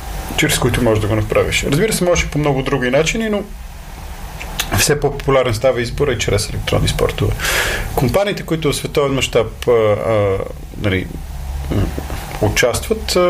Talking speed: 130 wpm